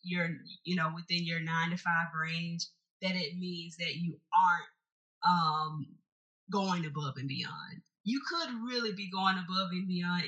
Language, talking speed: English, 165 wpm